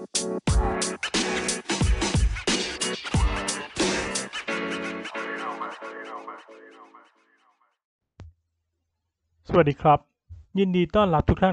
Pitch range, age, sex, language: 115-150 Hz, 20-39, male, Thai